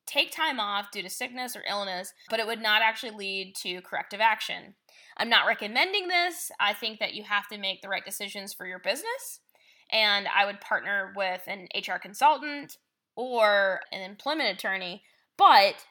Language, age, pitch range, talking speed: English, 10-29, 195-245 Hz, 175 wpm